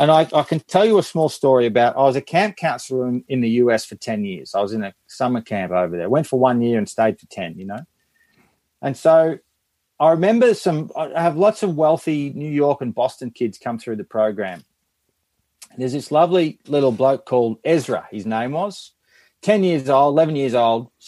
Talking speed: 215 wpm